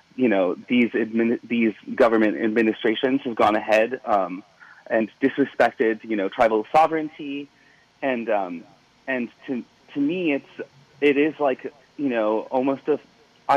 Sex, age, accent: male, 30-49, American